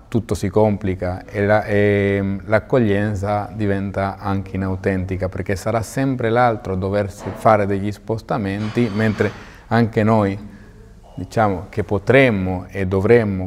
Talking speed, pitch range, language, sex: 115 wpm, 95-110 Hz, Italian, male